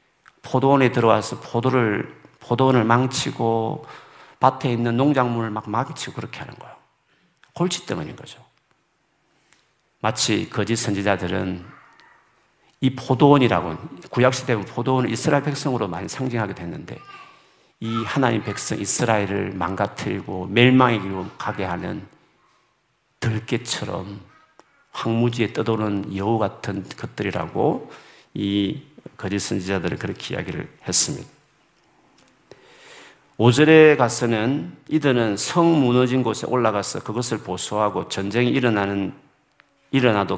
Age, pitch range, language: 50-69, 100-130 Hz, Korean